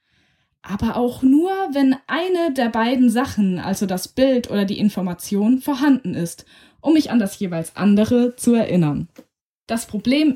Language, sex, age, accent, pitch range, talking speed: German, female, 20-39, German, 200-255 Hz, 150 wpm